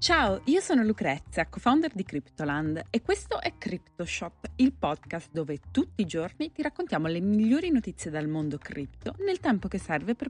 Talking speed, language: 175 wpm, Italian